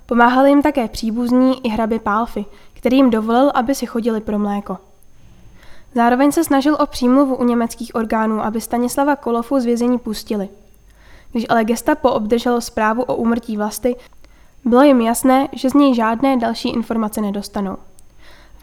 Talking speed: 155 wpm